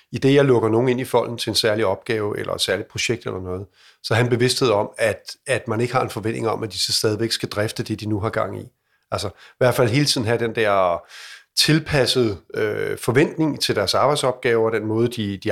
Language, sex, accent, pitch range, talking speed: Danish, male, native, 110-130 Hz, 240 wpm